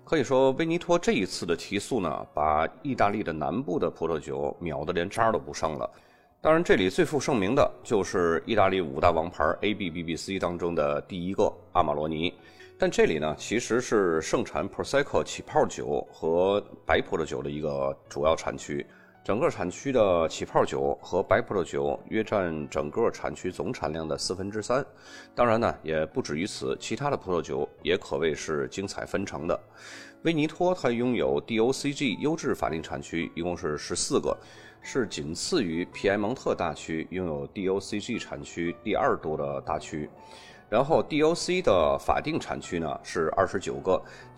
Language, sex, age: Chinese, male, 30-49